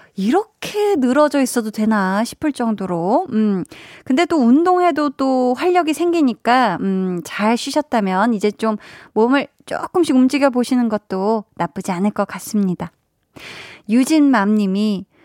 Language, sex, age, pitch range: Korean, female, 20-39, 200-290 Hz